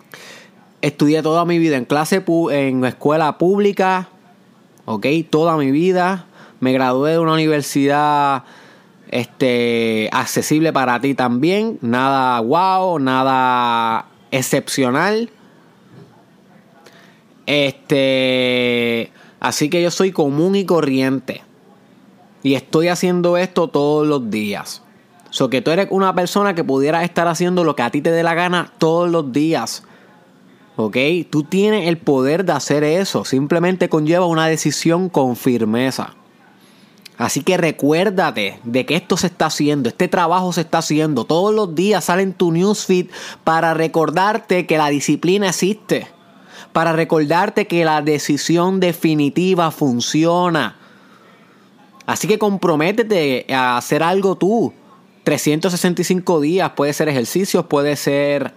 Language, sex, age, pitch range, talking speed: Spanish, male, 20-39, 140-180 Hz, 130 wpm